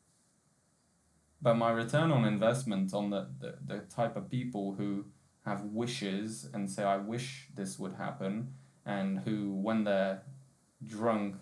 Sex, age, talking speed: male, 20-39, 140 wpm